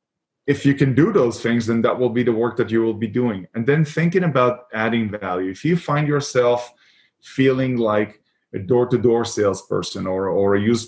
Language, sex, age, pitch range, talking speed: English, male, 20-39, 105-125 Hz, 200 wpm